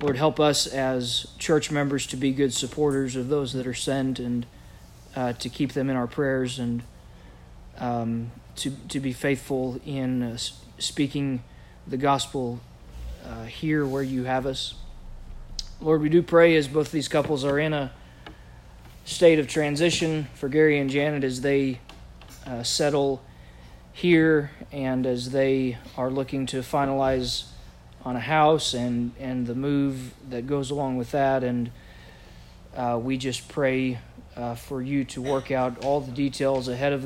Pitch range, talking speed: 120-140 Hz, 160 wpm